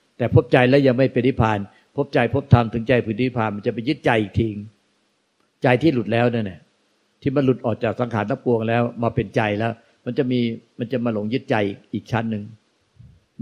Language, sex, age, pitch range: Thai, male, 60-79, 110-125 Hz